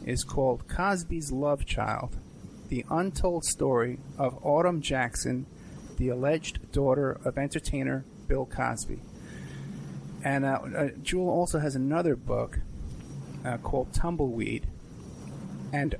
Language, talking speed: English, 115 wpm